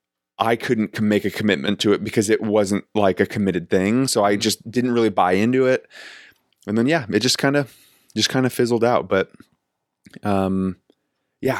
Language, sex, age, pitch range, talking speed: English, male, 20-39, 95-110 Hz, 190 wpm